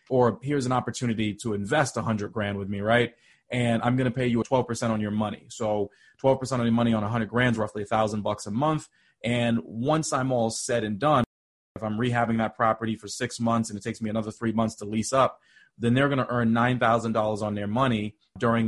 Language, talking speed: English, 230 wpm